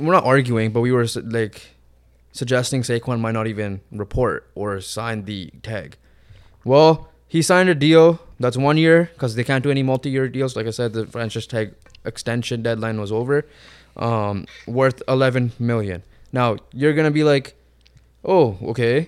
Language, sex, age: English, male, 20-39